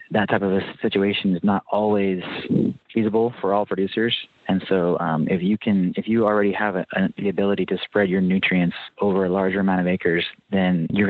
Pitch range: 95-110 Hz